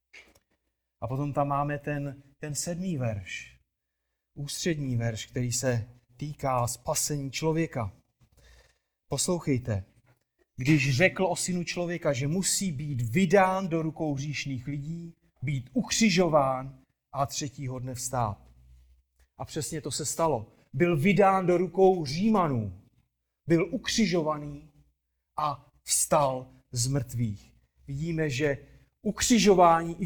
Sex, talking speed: male, 110 wpm